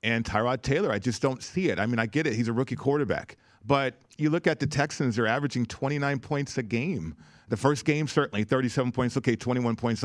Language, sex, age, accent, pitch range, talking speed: English, male, 40-59, American, 115-145 Hz, 225 wpm